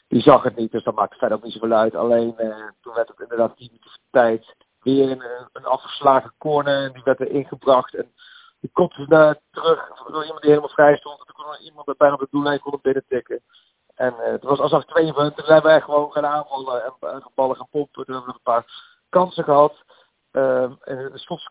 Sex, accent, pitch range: male, Dutch, 130-155 Hz